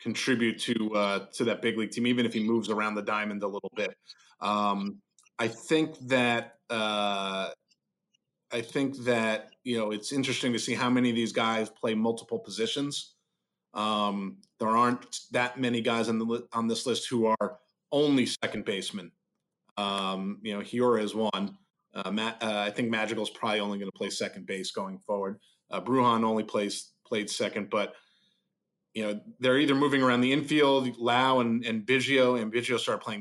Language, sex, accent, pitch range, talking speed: English, male, American, 105-125 Hz, 185 wpm